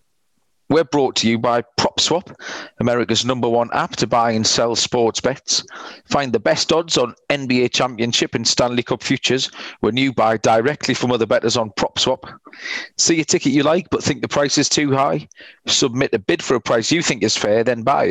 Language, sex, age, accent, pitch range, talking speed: English, male, 40-59, British, 115-140 Hz, 200 wpm